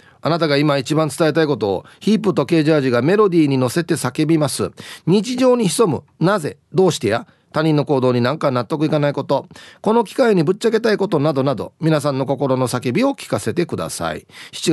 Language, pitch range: Japanese, 135-210 Hz